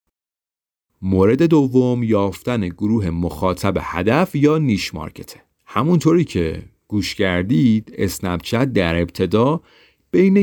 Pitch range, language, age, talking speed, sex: 90-125 Hz, Persian, 40-59, 100 wpm, male